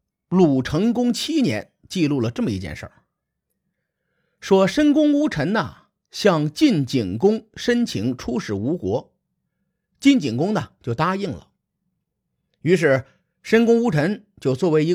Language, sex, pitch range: Chinese, male, 125-200 Hz